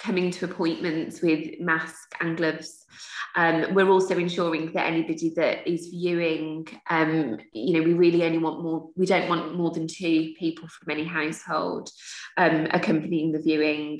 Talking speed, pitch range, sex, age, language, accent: 165 wpm, 160-180 Hz, female, 20-39, English, British